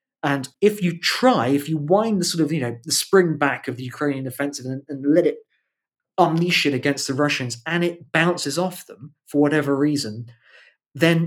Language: English